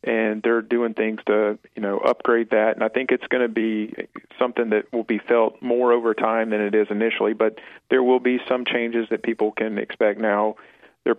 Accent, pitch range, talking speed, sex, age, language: American, 105-115 Hz, 210 wpm, male, 40-59, English